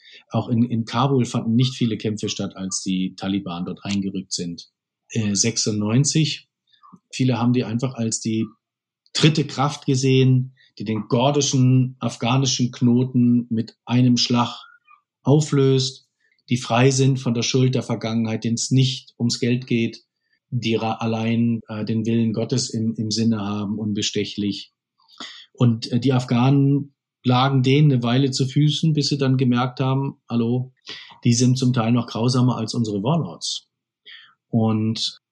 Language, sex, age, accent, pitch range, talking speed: German, male, 40-59, German, 115-135 Hz, 145 wpm